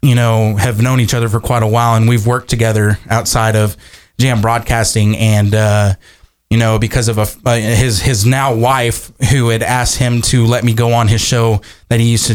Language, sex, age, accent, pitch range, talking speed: English, male, 20-39, American, 110-125 Hz, 220 wpm